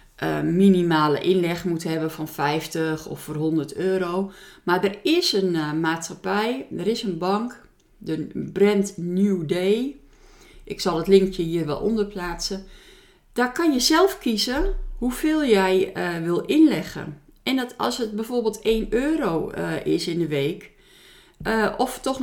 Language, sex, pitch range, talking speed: Dutch, female, 170-245 Hz, 155 wpm